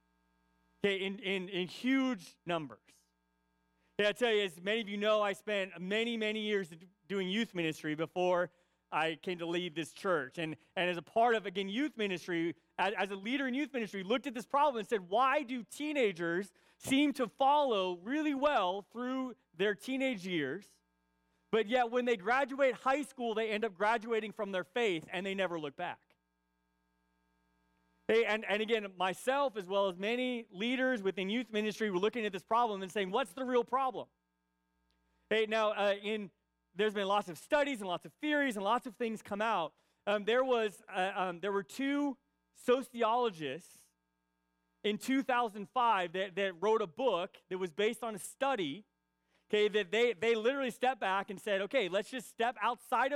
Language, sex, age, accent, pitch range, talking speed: English, male, 30-49, American, 175-240 Hz, 185 wpm